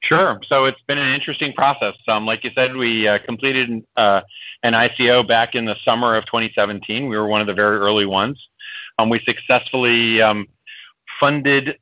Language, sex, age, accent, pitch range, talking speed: English, male, 40-59, American, 110-140 Hz, 185 wpm